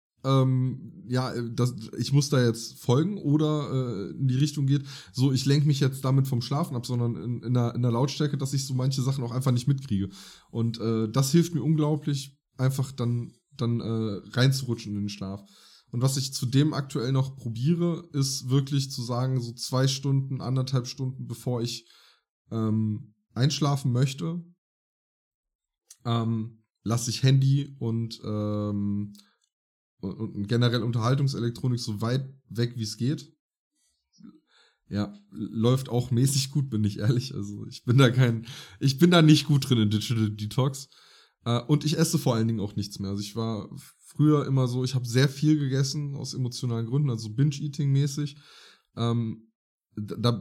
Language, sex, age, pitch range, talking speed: German, male, 20-39, 115-140 Hz, 165 wpm